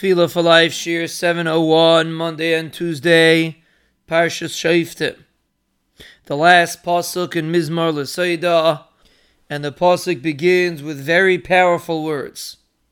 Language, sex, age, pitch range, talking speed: English, male, 30-49, 165-195 Hz, 105 wpm